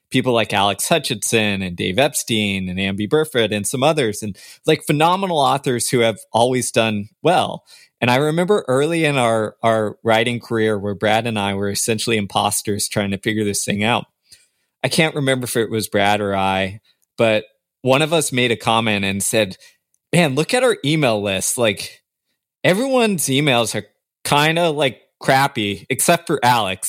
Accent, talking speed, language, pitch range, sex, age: American, 175 wpm, English, 110-140 Hz, male, 20-39